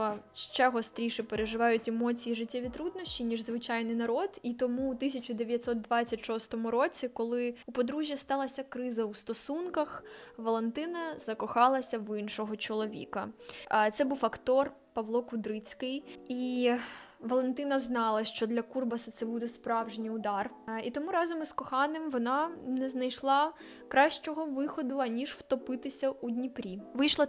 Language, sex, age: Ukrainian, female, 10-29